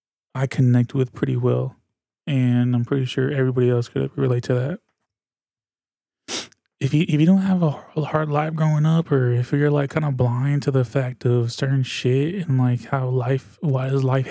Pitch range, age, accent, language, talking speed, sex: 125-145 Hz, 20-39, American, English, 195 wpm, male